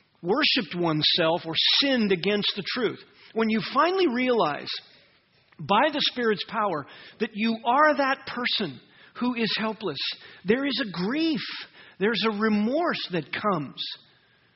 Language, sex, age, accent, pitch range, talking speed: English, male, 50-69, American, 160-245 Hz, 130 wpm